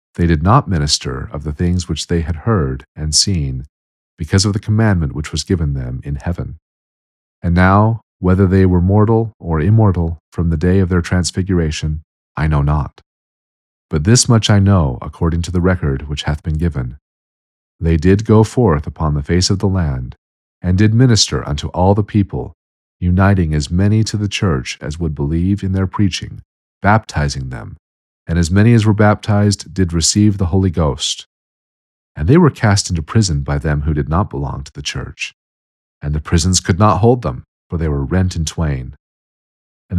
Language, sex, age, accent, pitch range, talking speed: English, male, 40-59, American, 75-100 Hz, 185 wpm